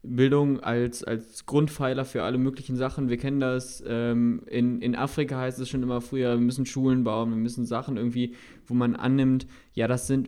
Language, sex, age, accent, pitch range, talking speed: German, male, 20-39, German, 110-125 Hz, 200 wpm